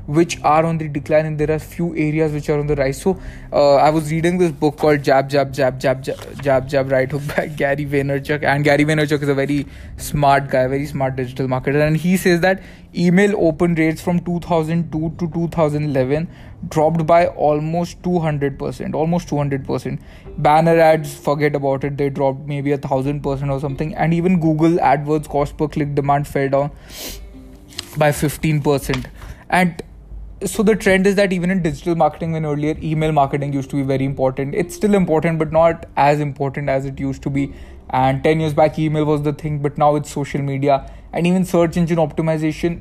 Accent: Indian